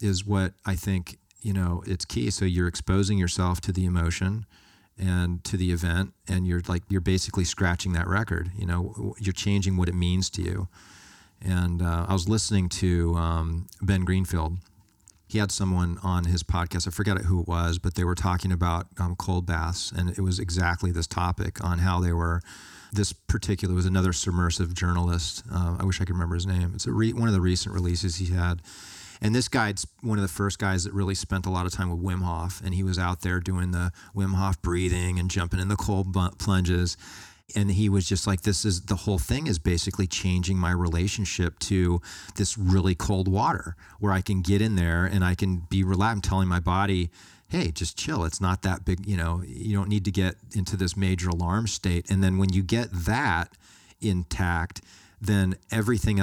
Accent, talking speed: American, 205 wpm